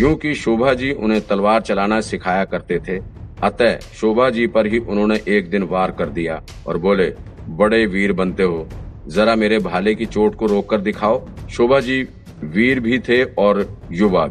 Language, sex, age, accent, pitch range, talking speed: Hindi, male, 50-69, native, 95-110 Hz, 175 wpm